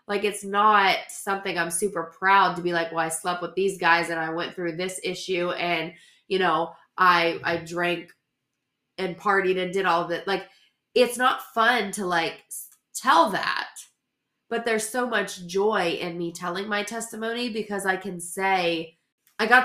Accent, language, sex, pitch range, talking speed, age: American, English, female, 170-210 Hz, 180 wpm, 20-39